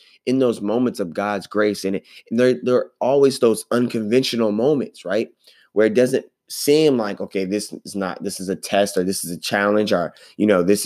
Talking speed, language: 215 wpm, English